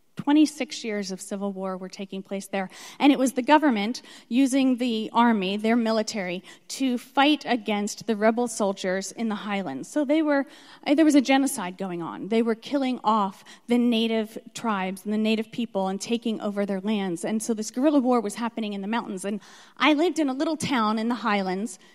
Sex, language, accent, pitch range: female, English, American, 200-250 Hz